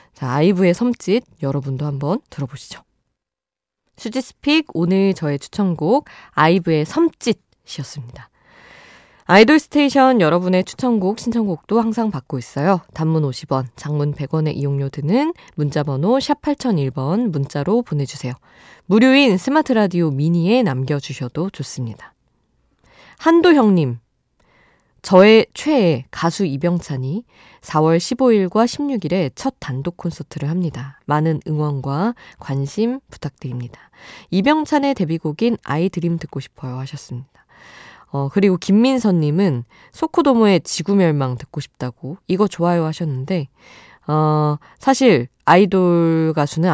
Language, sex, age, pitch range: Korean, female, 20-39, 140-215 Hz